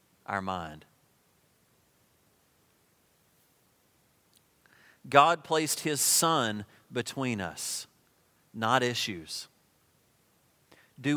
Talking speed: 60 wpm